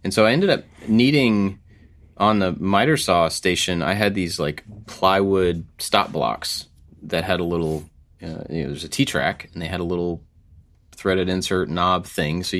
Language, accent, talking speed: English, American, 175 wpm